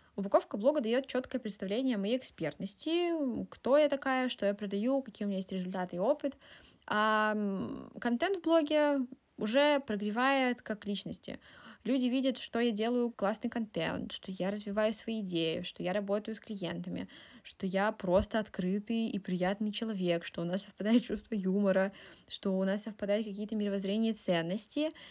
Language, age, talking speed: Russian, 20-39, 160 wpm